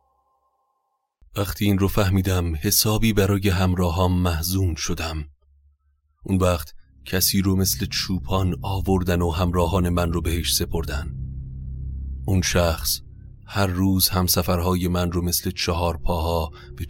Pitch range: 85-100 Hz